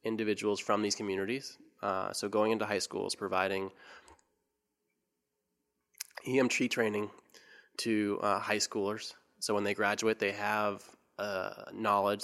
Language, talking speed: English, 125 wpm